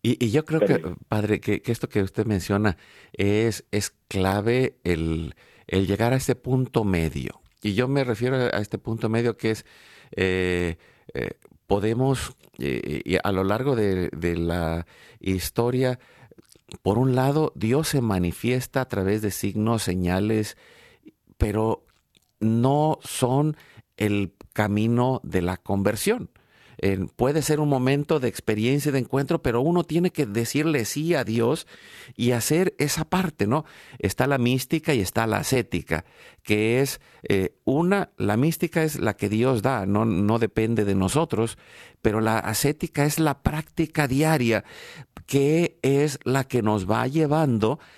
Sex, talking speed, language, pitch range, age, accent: male, 155 wpm, Spanish, 105-140 Hz, 50-69, Mexican